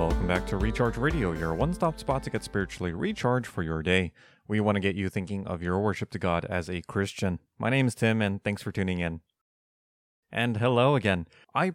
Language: English